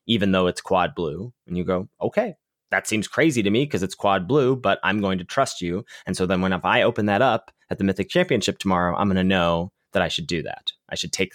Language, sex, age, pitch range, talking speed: English, male, 20-39, 95-130 Hz, 260 wpm